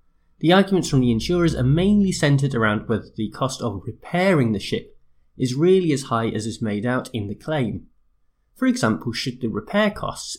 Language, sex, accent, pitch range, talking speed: English, male, British, 110-165 Hz, 190 wpm